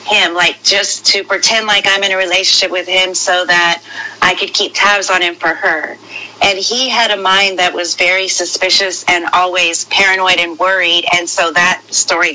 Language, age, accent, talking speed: English, 40-59, American, 195 wpm